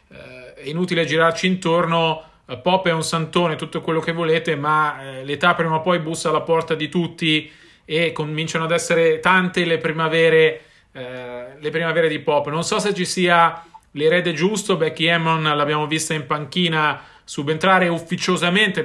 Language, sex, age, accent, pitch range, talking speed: Italian, male, 30-49, native, 155-180 Hz, 155 wpm